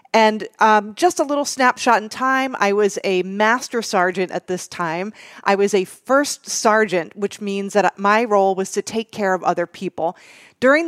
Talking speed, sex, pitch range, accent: 190 wpm, female, 195-230 Hz, American